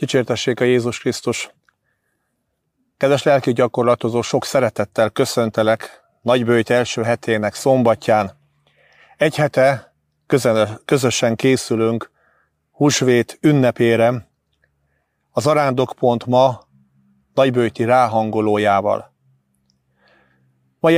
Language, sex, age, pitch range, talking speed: Hungarian, male, 30-49, 110-150 Hz, 75 wpm